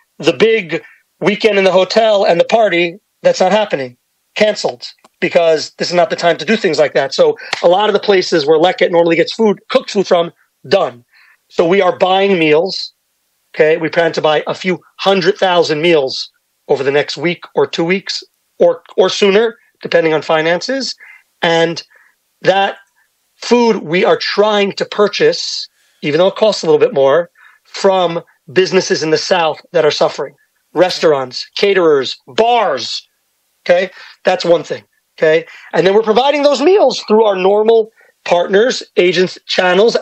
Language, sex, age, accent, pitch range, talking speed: English, male, 40-59, American, 170-230 Hz, 165 wpm